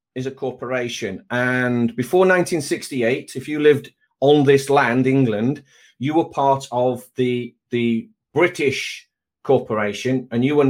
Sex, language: male, English